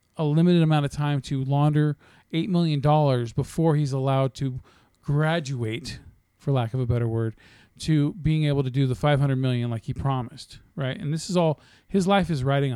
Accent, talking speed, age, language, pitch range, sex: American, 200 wpm, 40-59, English, 135-170 Hz, male